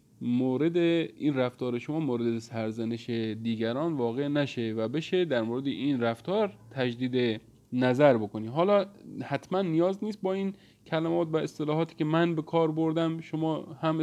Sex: male